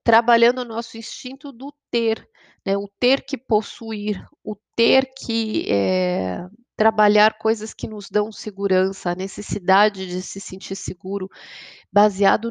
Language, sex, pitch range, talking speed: Portuguese, female, 195-245 Hz, 130 wpm